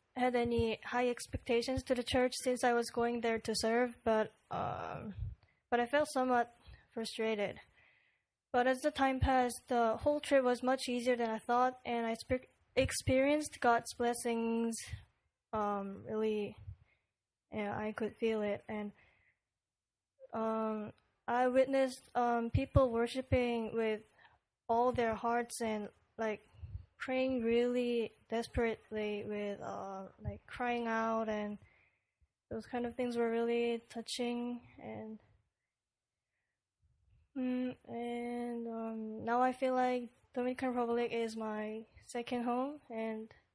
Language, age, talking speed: English, 10-29, 125 wpm